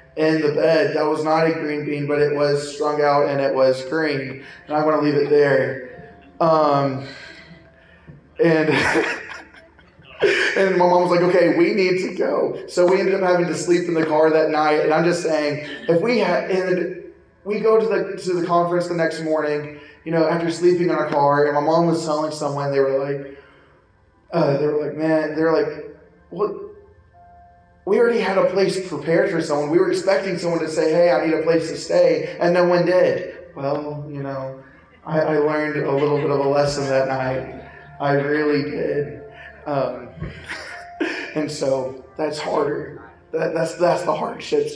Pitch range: 145-175 Hz